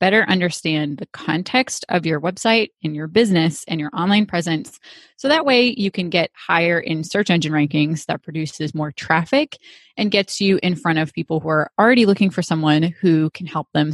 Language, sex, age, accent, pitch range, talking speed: English, female, 30-49, American, 160-200 Hz, 200 wpm